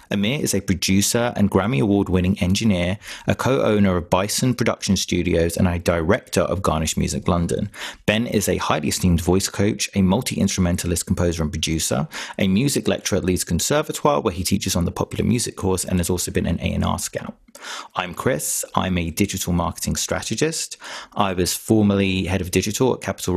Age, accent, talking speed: 30-49, British, 180 wpm